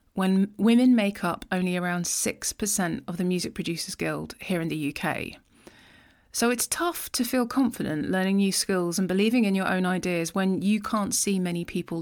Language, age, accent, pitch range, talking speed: English, 30-49, British, 175-215 Hz, 185 wpm